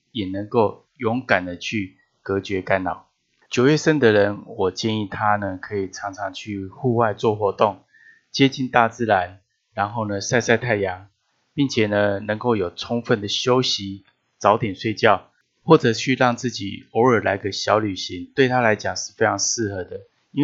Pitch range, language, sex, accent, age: 100-125 Hz, Chinese, male, native, 20-39